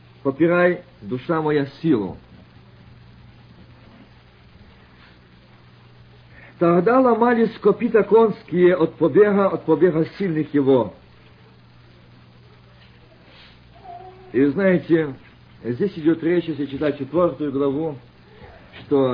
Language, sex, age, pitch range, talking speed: Russian, male, 50-69, 115-170 Hz, 70 wpm